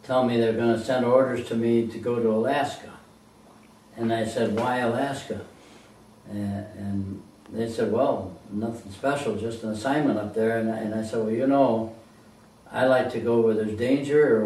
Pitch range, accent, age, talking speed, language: 110-120 Hz, American, 60-79, 190 wpm, English